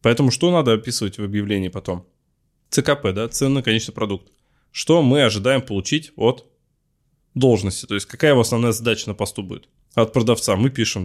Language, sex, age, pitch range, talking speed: Russian, male, 20-39, 105-130 Hz, 170 wpm